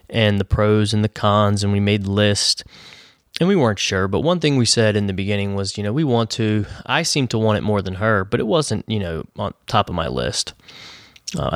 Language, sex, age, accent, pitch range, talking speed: English, male, 20-39, American, 95-110 Hz, 245 wpm